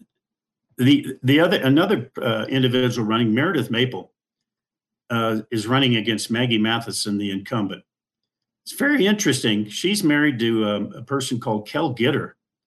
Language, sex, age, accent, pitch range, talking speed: English, male, 50-69, American, 105-130 Hz, 135 wpm